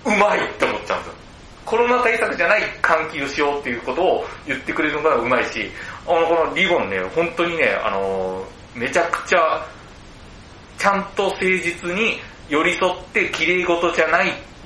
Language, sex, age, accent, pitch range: Japanese, male, 40-59, native, 140-230 Hz